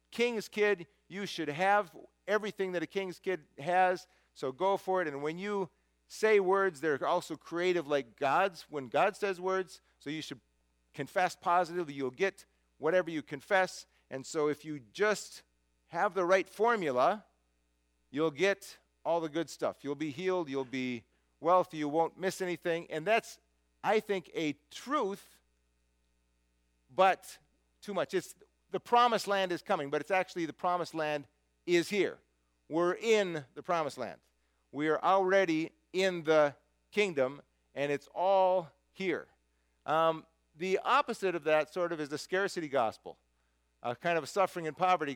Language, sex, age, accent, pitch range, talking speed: English, male, 40-59, American, 130-190 Hz, 160 wpm